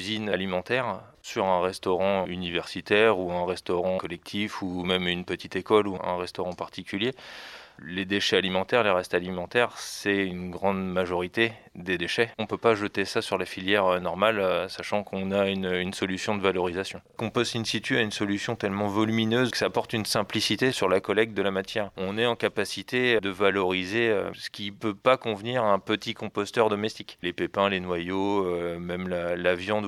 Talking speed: 185 wpm